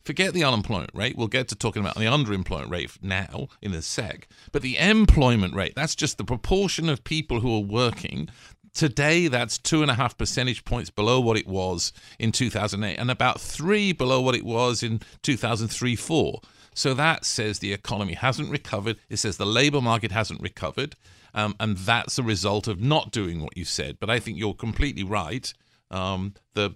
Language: English